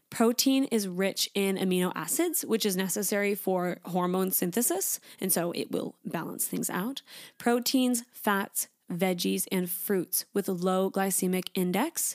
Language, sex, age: English, female, 20-39